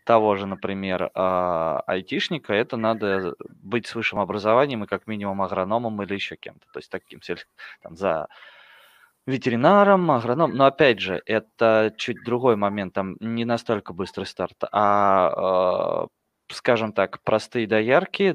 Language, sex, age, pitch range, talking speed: Russian, male, 20-39, 100-120 Hz, 135 wpm